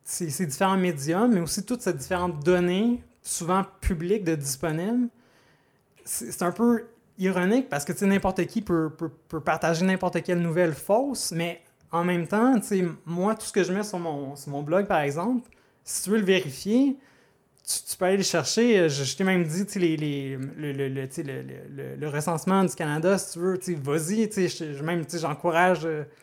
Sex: male